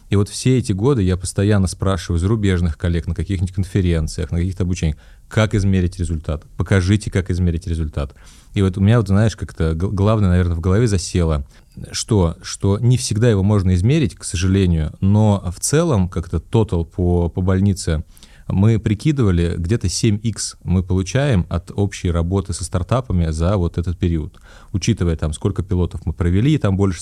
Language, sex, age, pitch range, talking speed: Russian, male, 30-49, 85-110 Hz, 170 wpm